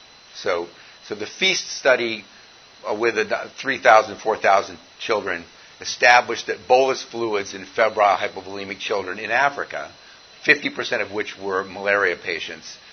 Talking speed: 115 wpm